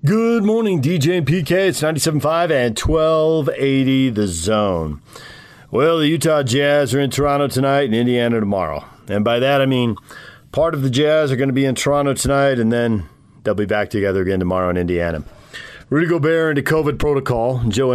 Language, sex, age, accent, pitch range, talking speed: English, male, 40-59, American, 105-145 Hz, 180 wpm